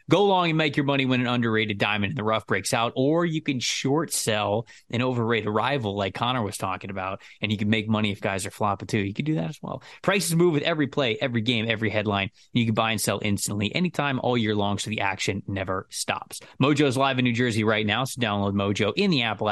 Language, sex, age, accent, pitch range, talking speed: English, male, 20-39, American, 105-135 Hz, 250 wpm